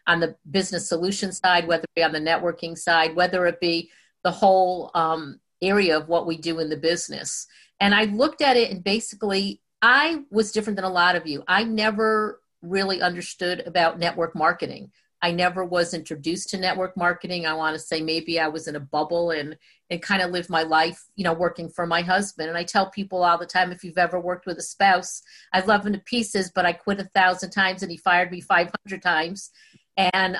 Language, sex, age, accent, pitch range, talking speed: English, female, 50-69, American, 175-205 Hz, 215 wpm